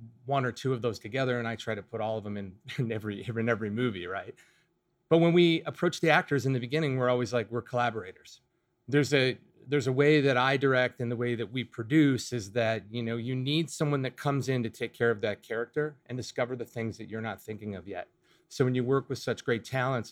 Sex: male